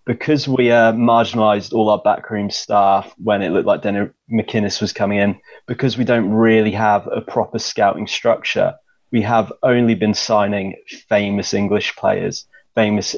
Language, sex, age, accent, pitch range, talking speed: English, male, 20-39, British, 100-110 Hz, 160 wpm